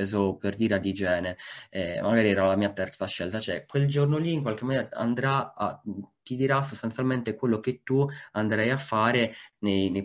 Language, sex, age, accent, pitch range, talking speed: Italian, male, 20-39, native, 95-110 Hz, 185 wpm